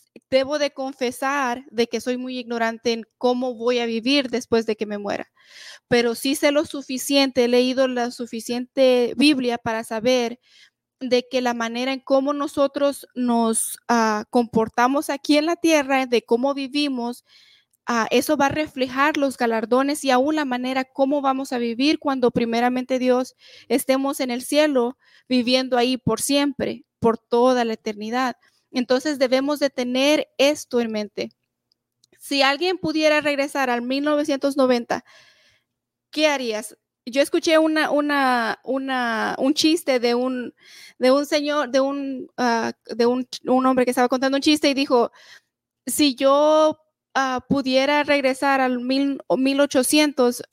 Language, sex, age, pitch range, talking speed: Spanish, female, 30-49, 245-285 Hz, 150 wpm